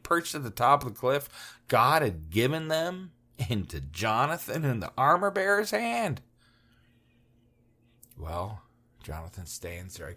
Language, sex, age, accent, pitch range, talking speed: English, male, 40-59, American, 105-155 Hz, 135 wpm